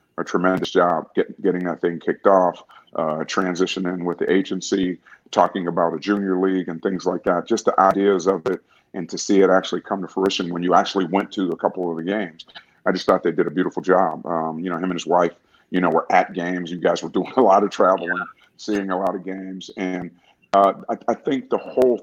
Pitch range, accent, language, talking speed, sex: 90-105 Hz, American, English, 235 wpm, male